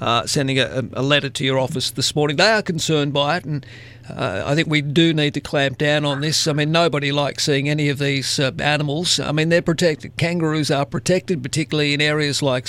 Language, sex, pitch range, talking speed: English, male, 140-170 Hz, 225 wpm